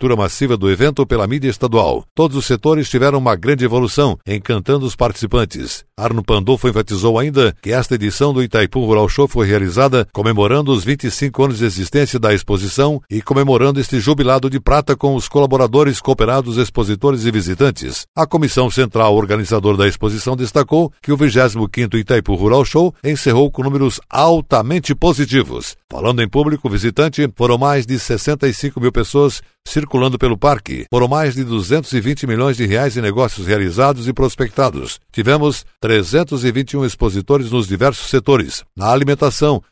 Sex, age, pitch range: male, 60-79, 115-140 Hz